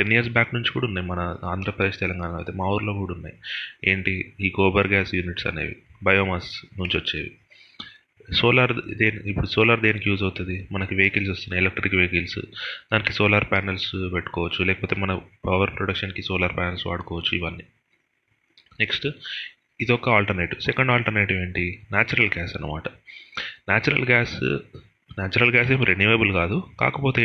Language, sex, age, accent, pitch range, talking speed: Telugu, male, 30-49, native, 95-120 Hz, 140 wpm